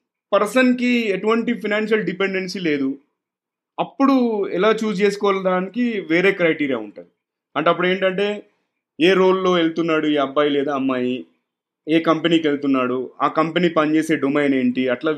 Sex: male